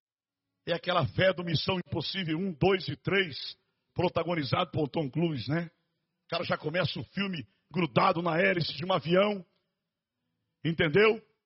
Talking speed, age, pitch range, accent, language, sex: 145 wpm, 60-79, 165-270 Hz, Brazilian, Portuguese, male